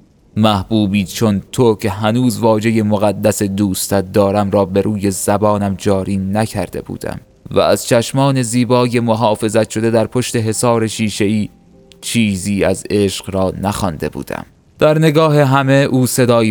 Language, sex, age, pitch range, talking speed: Persian, male, 20-39, 95-110 Hz, 135 wpm